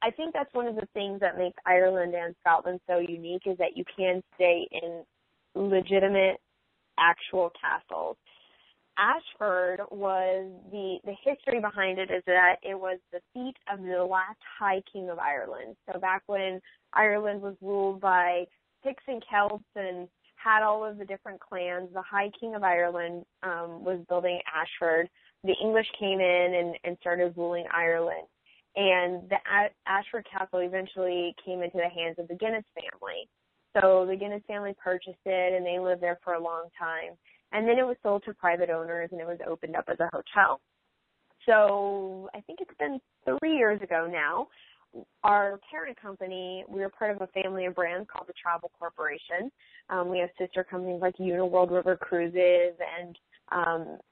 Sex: female